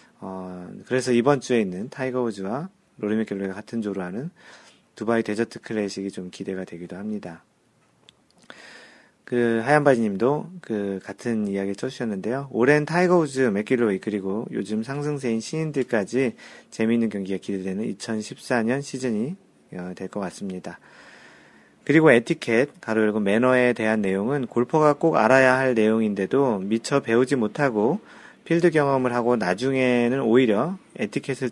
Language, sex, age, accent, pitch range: Korean, male, 40-59, native, 100-130 Hz